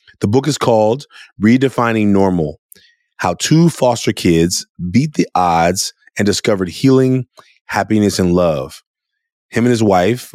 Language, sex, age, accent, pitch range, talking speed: English, male, 30-49, American, 95-115 Hz, 135 wpm